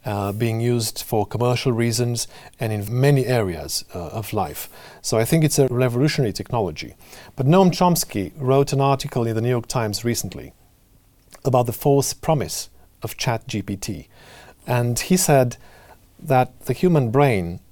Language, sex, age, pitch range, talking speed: English, male, 50-69, 110-140 Hz, 150 wpm